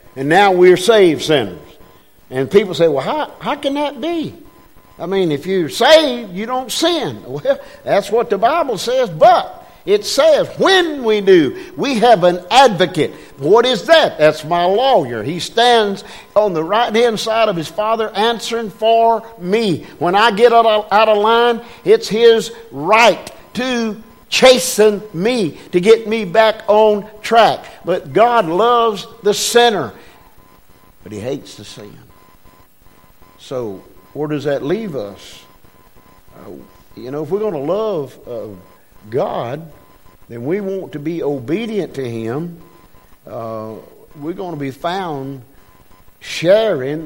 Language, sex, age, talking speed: English, male, 50-69, 145 wpm